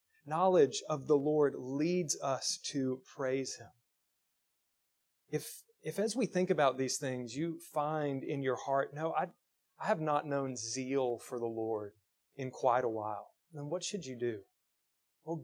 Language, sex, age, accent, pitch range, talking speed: English, male, 30-49, American, 130-165 Hz, 165 wpm